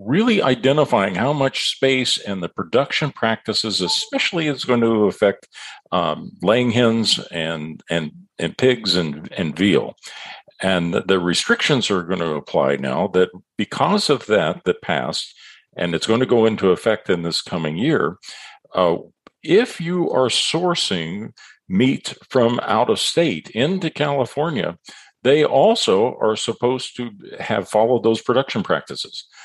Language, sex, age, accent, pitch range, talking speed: English, male, 50-69, American, 95-140 Hz, 145 wpm